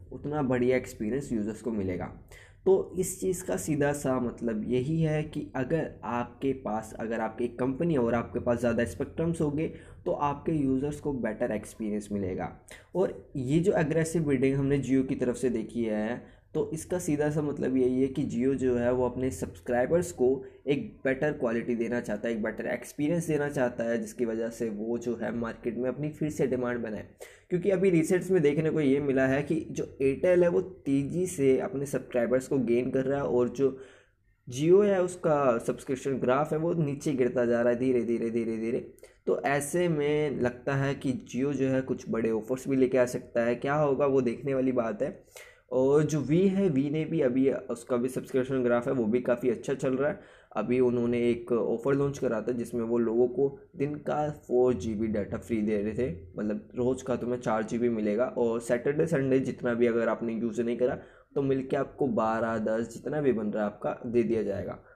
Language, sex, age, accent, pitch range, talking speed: Hindi, male, 20-39, native, 115-145 Hz, 210 wpm